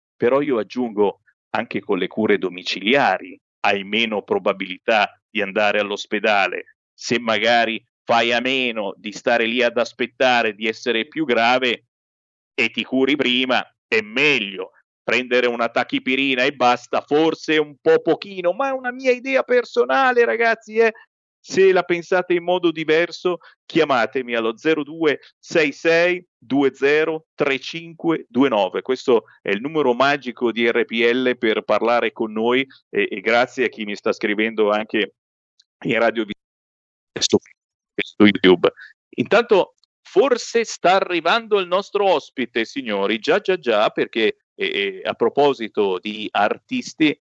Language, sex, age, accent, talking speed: Italian, male, 40-59, native, 130 wpm